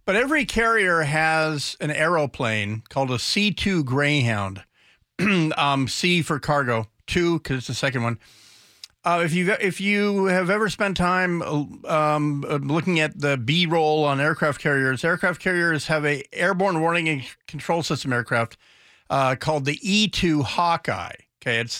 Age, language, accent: 50-69, English, American